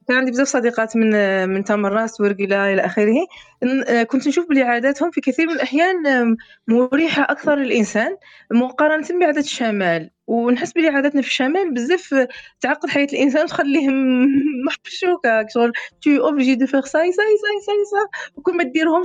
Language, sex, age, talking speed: Arabic, female, 20-39, 150 wpm